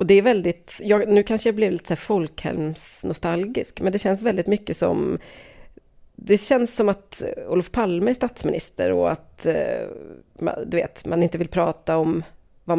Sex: female